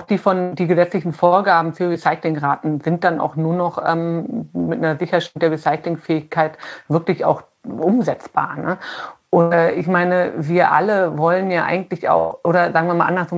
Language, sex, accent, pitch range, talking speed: German, female, German, 170-190 Hz, 165 wpm